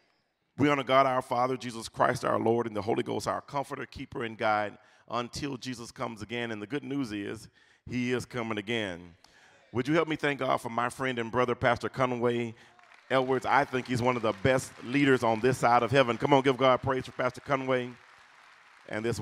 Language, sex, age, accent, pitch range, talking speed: English, male, 40-59, American, 110-130 Hz, 210 wpm